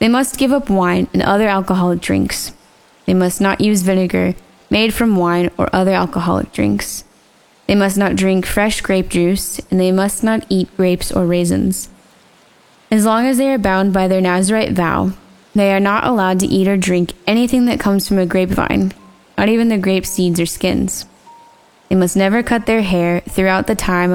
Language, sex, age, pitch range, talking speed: English, female, 10-29, 175-210 Hz, 190 wpm